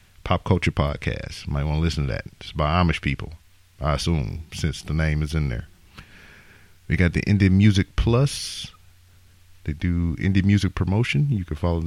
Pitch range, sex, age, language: 80-95 Hz, male, 40-59, English